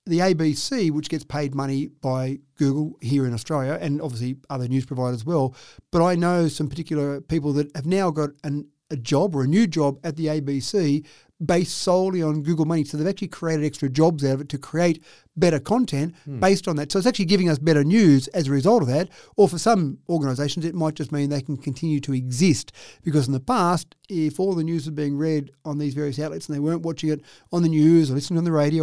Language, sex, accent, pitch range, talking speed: English, male, Australian, 145-175 Hz, 230 wpm